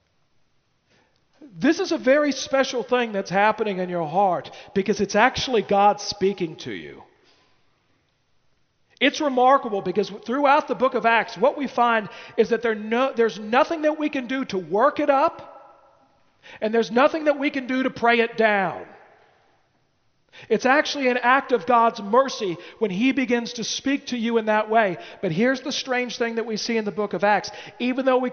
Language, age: English, 40-59